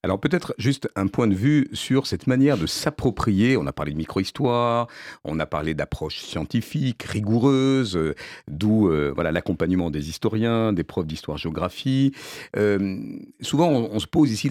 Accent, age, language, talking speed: French, 50-69, French, 165 wpm